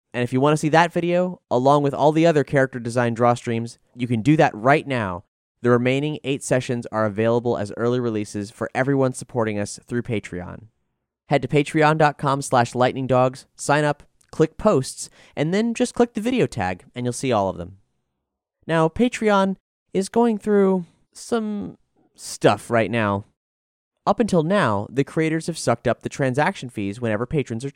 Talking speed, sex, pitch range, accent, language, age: 175 wpm, male, 120-170 Hz, American, English, 30-49